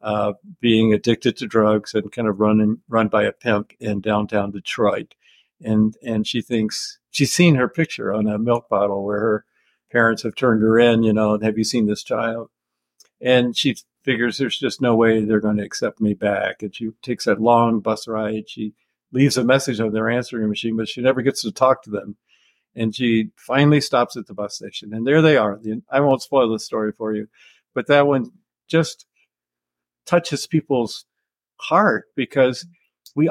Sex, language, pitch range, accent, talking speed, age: male, English, 110-140 Hz, American, 195 wpm, 50-69